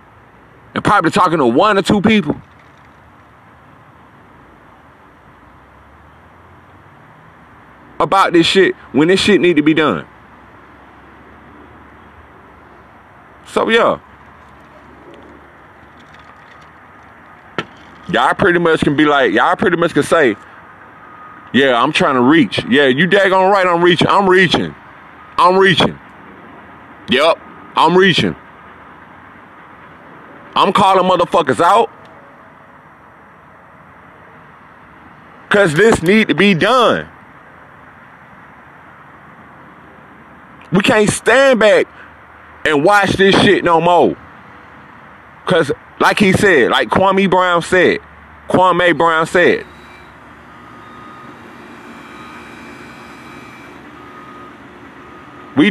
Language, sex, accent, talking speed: English, male, American, 90 wpm